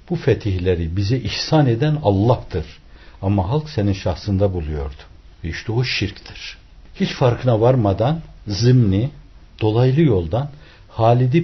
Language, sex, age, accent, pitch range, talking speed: Turkish, male, 60-79, native, 90-130 Hz, 110 wpm